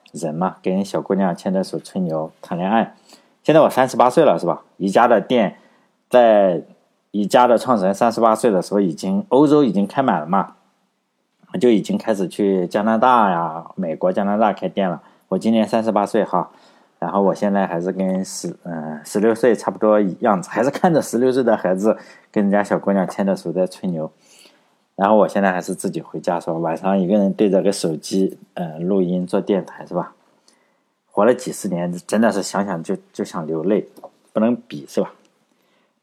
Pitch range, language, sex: 95-115 Hz, Chinese, male